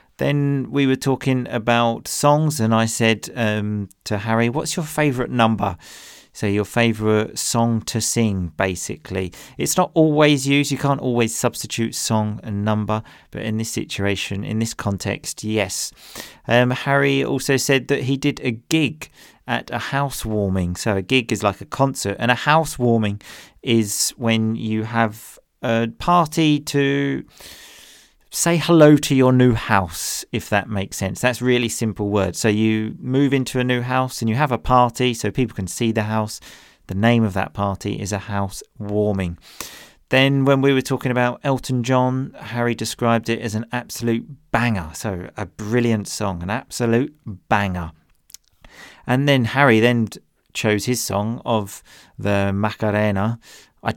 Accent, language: British, English